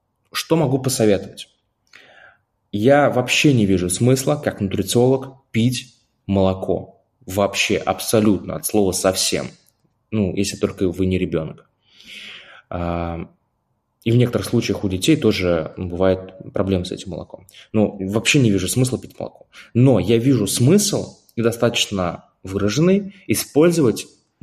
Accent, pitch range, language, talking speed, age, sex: native, 95-120 Hz, Russian, 125 wpm, 20-39, male